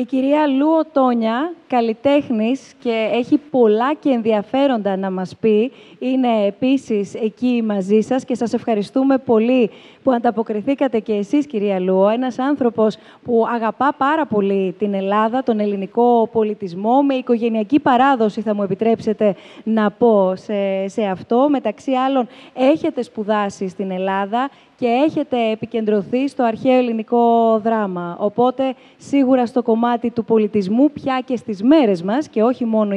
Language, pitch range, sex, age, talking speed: Greek, 215-260 Hz, female, 20-39, 140 wpm